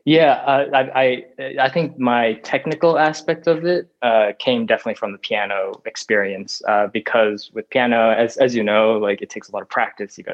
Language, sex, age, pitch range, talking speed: English, male, 20-39, 105-130 Hz, 205 wpm